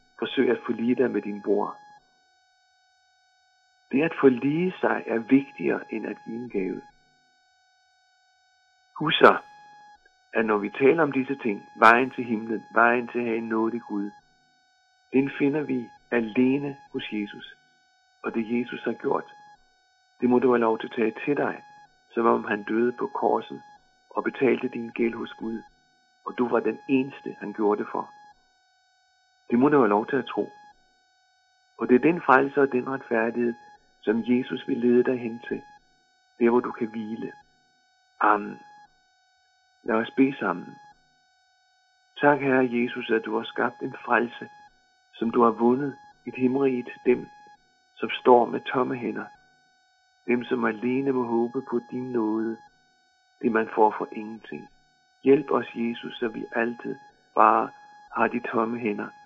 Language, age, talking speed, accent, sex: Danish, 50-69, 160 wpm, native, male